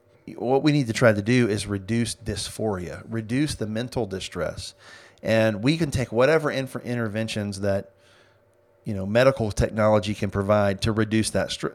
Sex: male